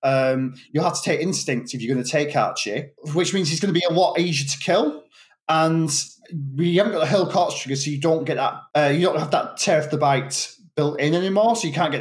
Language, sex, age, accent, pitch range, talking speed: English, male, 20-39, British, 145-205 Hz, 240 wpm